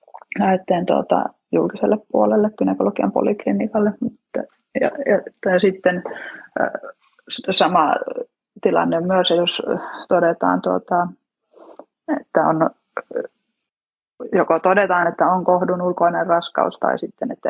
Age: 20-39